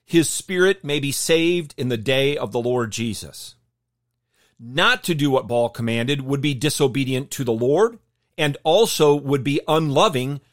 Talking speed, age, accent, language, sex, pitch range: 165 wpm, 40-59, American, English, male, 120-160 Hz